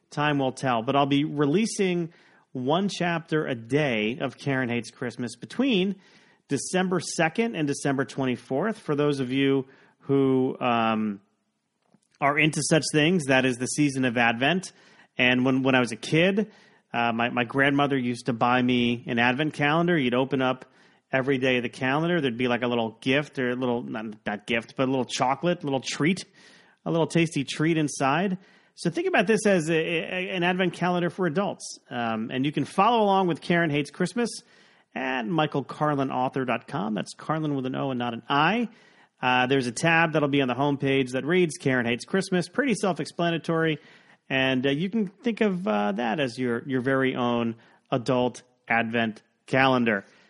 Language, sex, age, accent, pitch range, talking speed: English, male, 30-49, American, 125-170 Hz, 180 wpm